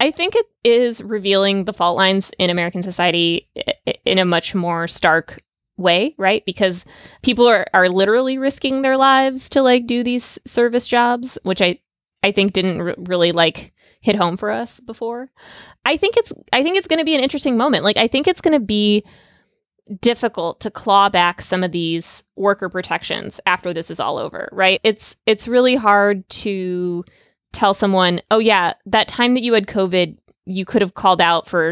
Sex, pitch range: female, 180-240 Hz